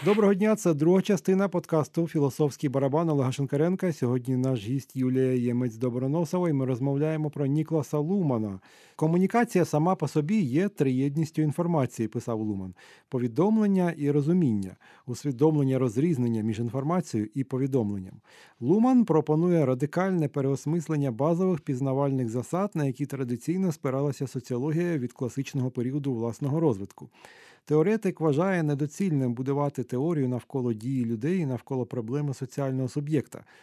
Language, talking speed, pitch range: Ukrainian, 125 wpm, 130-165 Hz